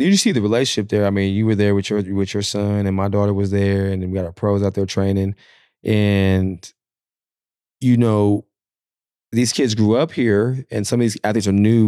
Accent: American